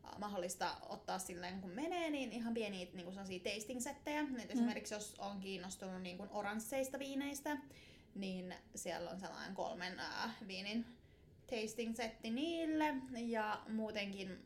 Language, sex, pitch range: Finnish, female, 190-230 Hz